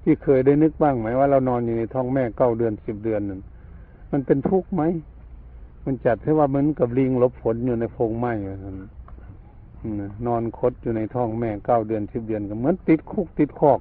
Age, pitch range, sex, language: 60-79, 110-145 Hz, male, Thai